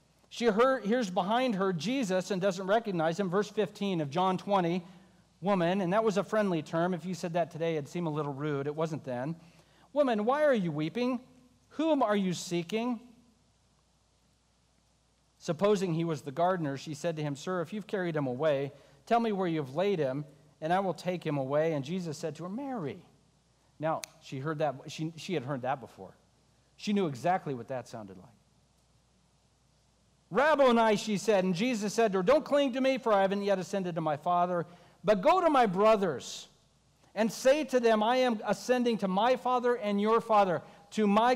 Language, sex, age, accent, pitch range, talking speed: English, male, 50-69, American, 165-215 Hz, 190 wpm